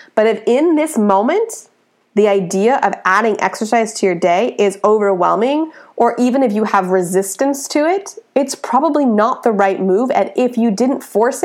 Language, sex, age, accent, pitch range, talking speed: English, female, 30-49, American, 195-255 Hz, 180 wpm